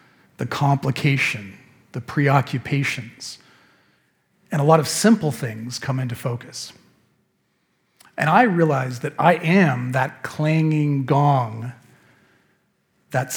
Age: 40-59